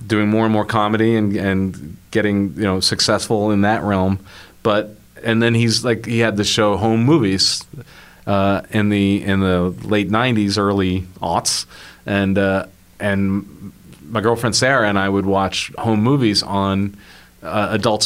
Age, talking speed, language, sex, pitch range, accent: 40-59, 165 wpm, English, male, 90-105 Hz, American